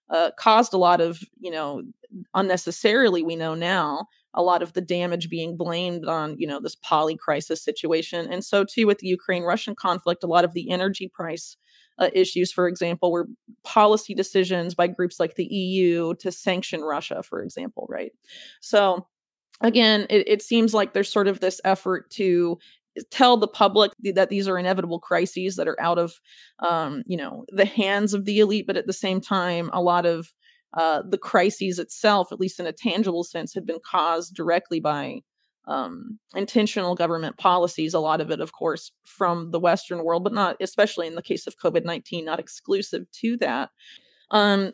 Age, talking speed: 30-49, 185 wpm